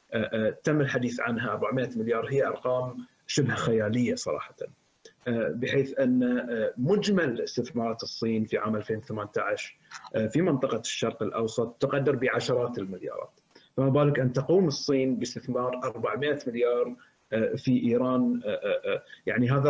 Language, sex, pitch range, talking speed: Arabic, male, 120-165 Hz, 115 wpm